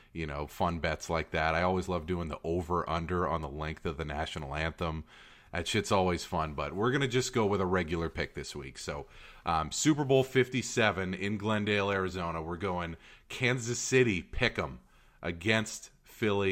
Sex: male